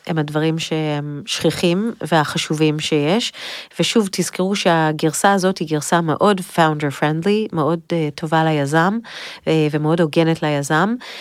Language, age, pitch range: Hebrew, 30-49, 150-180 Hz